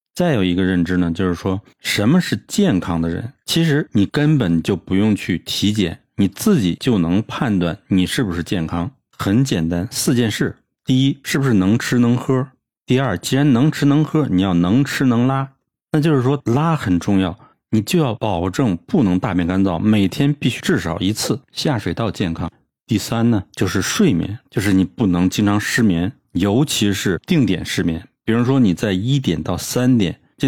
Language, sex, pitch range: Chinese, male, 90-130 Hz